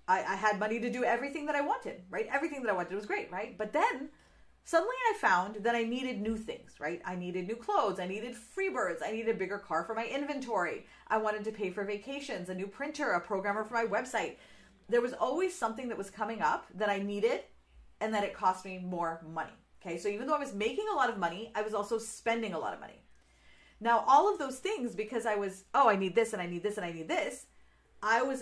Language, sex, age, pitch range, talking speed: English, female, 30-49, 190-235 Hz, 245 wpm